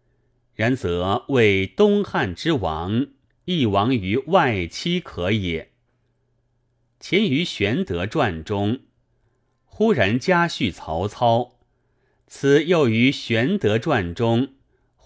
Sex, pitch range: male, 100-130 Hz